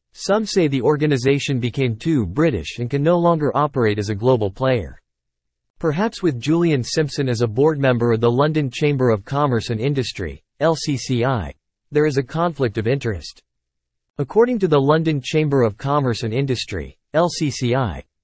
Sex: male